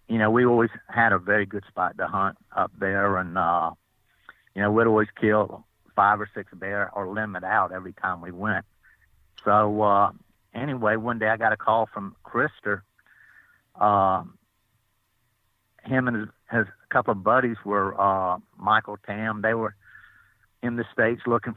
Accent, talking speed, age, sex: American, 165 wpm, 50-69, male